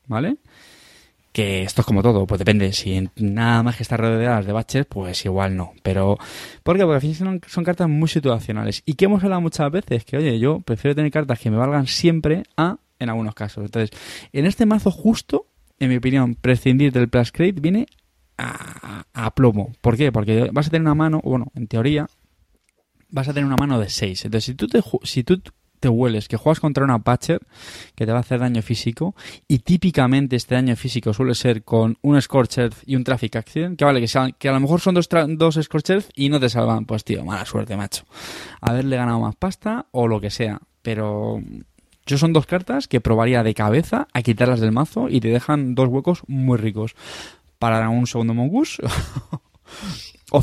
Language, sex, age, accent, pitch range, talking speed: Spanish, male, 20-39, Spanish, 115-155 Hz, 200 wpm